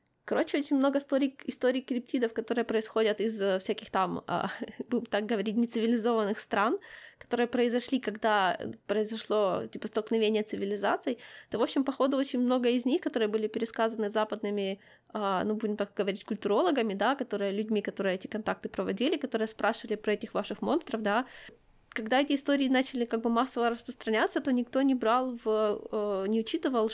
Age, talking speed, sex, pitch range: 20-39, 155 wpm, female, 215-255 Hz